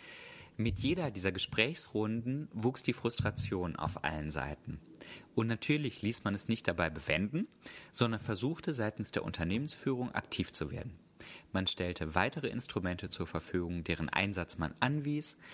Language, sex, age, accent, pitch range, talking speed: German, male, 30-49, German, 95-120 Hz, 140 wpm